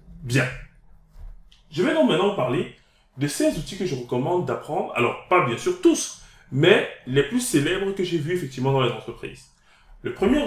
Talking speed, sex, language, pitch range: 180 wpm, male, French, 125-190 Hz